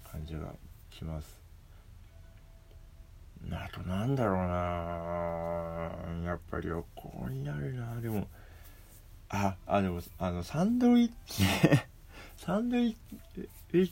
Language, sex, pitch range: Japanese, male, 85-105 Hz